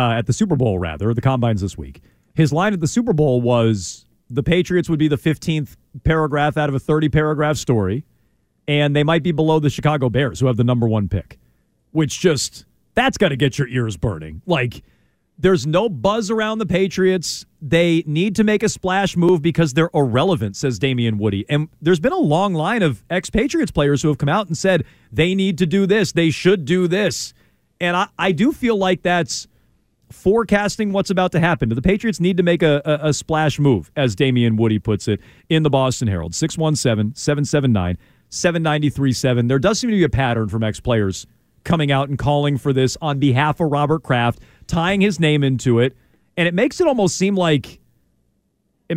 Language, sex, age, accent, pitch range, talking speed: English, male, 40-59, American, 125-180 Hz, 200 wpm